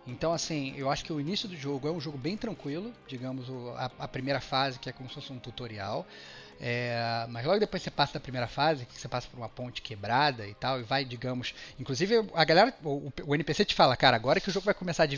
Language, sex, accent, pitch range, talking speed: Portuguese, male, Brazilian, 135-180 Hz, 250 wpm